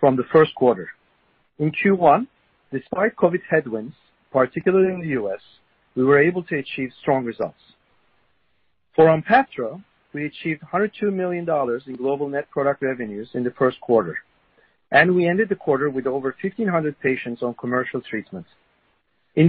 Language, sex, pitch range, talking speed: English, male, 140-185 Hz, 150 wpm